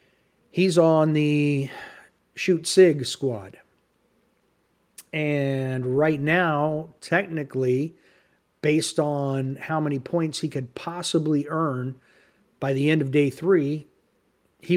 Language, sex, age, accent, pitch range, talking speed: English, male, 50-69, American, 130-160 Hz, 100 wpm